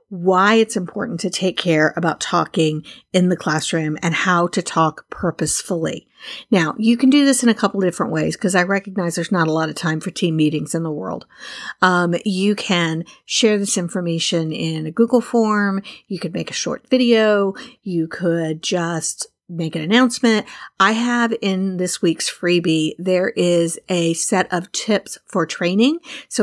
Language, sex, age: English, female, 50-69